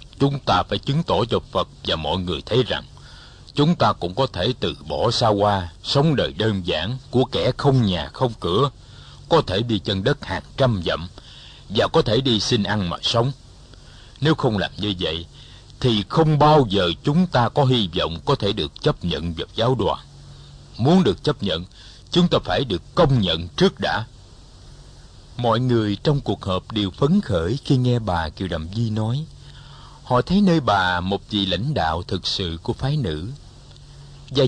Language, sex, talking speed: Vietnamese, male, 190 wpm